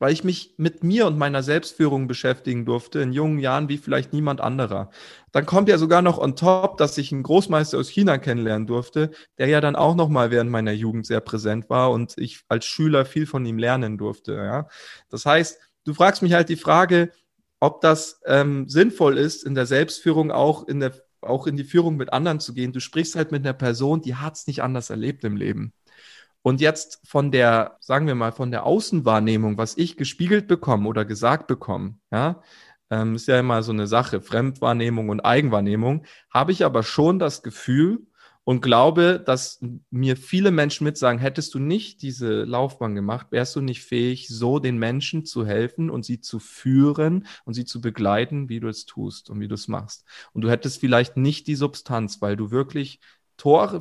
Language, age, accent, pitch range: German, 30-49, German, 120-155 Hz